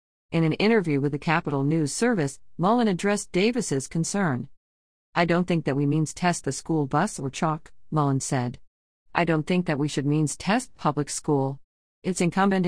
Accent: American